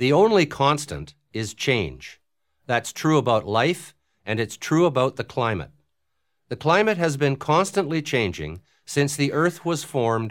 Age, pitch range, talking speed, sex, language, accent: 50-69, 110-155 Hz, 150 wpm, male, English, American